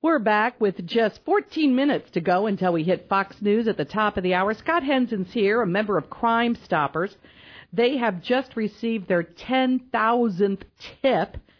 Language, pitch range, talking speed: English, 175-230 Hz, 175 wpm